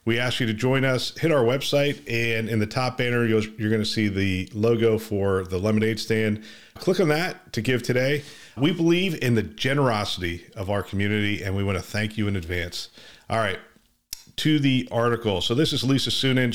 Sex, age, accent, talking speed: male, 40-59, American, 205 wpm